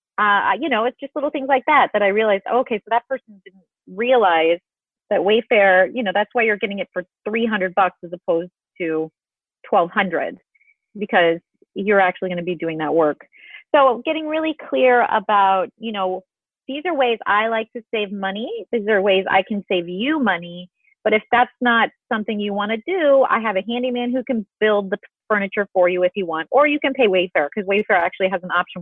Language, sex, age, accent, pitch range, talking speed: English, female, 30-49, American, 195-255 Hz, 210 wpm